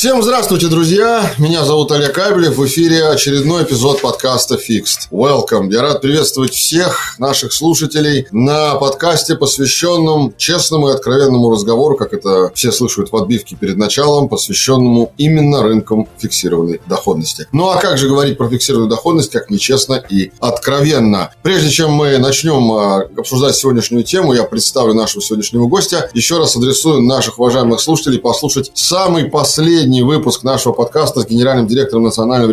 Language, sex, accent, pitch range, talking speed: Russian, male, native, 115-150 Hz, 150 wpm